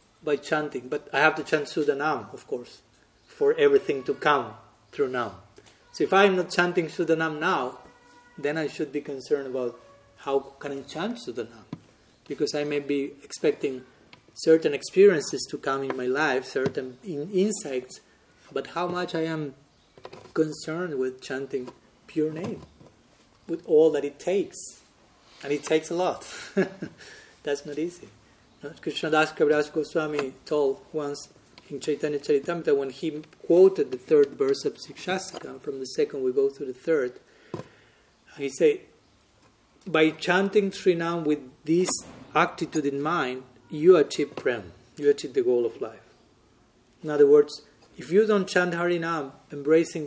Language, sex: English, male